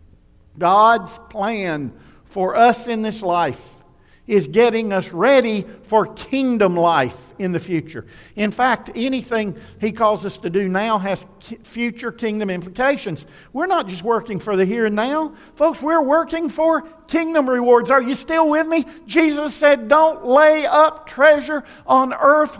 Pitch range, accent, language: 180-300 Hz, American, English